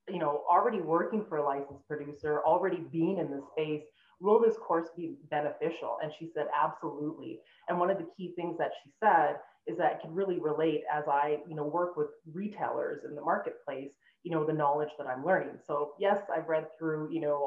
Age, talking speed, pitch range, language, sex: 20-39, 205 wpm, 150-180 Hz, English, female